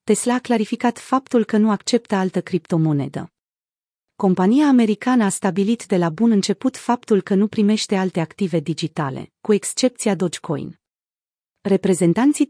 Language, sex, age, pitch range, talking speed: Romanian, female, 30-49, 180-230 Hz, 135 wpm